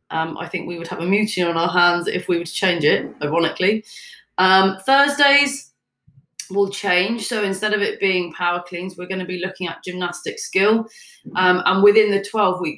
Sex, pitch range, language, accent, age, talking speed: female, 175-220 Hz, English, British, 30-49, 195 wpm